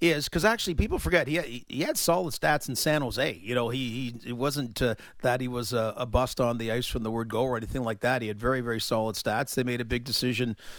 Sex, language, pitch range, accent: male, English, 125-150 Hz, American